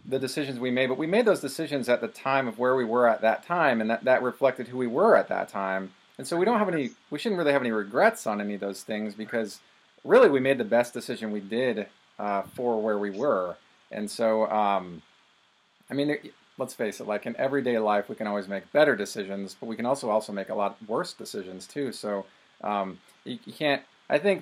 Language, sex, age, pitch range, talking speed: English, male, 40-59, 105-130 Hz, 240 wpm